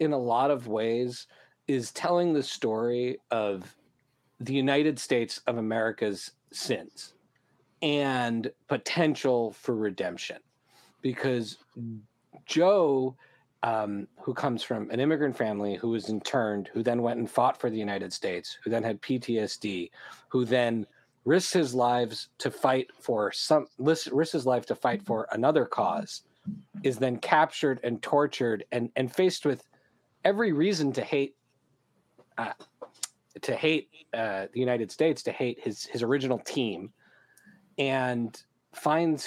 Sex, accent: male, American